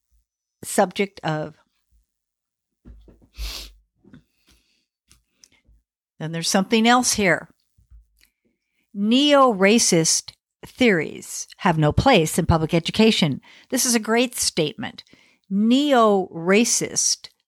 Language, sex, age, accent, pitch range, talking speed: English, female, 50-69, American, 160-250 Hz, 70 wpm